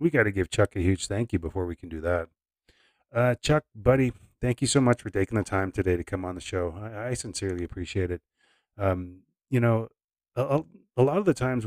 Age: 30-49